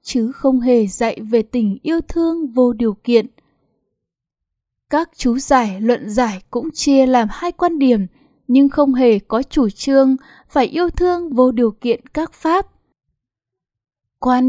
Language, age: Vietnamese, 10-29